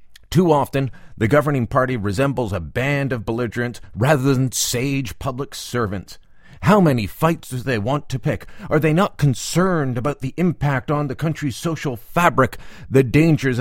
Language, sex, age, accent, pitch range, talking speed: English, male, 40-59, American, 105-155 Hz, 165 wpm